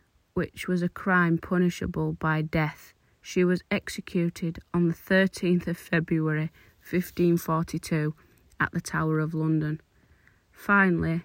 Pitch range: 160-180 Hz